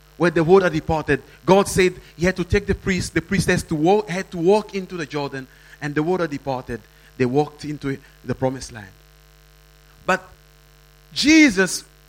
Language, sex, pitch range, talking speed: English, male, 150-185 Hz, 160 wpm